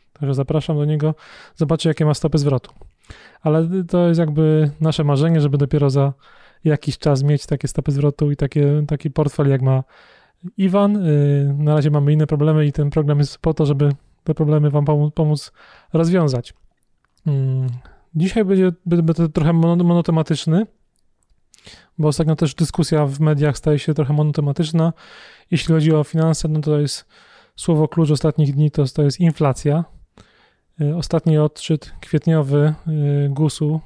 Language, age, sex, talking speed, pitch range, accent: Polish, 20-39, male, 150 wpm, 145-160 Hz, native